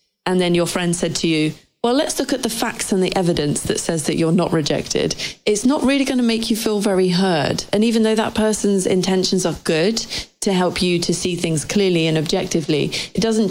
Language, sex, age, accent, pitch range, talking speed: English, female, 30-49, British, 165-200 Hz, 225 wpm